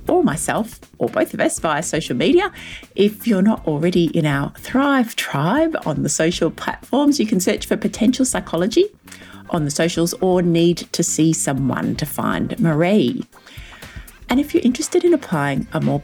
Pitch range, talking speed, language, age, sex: 155-240 Hz, 170 wpm, English, 30-49, female